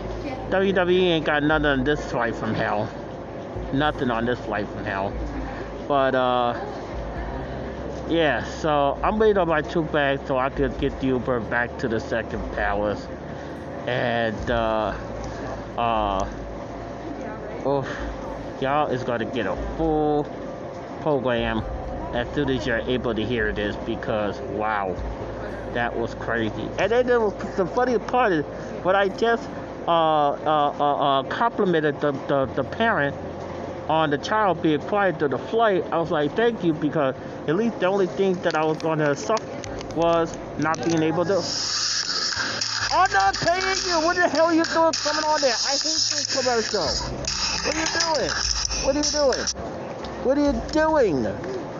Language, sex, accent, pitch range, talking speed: English, male, American, 130-215 Hz, 160 wpm